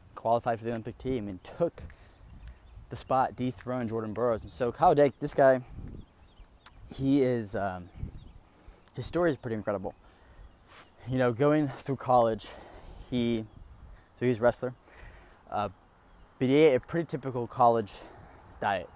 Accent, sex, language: American, male, English